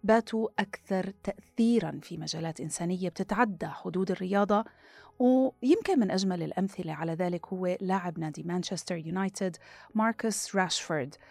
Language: Arabic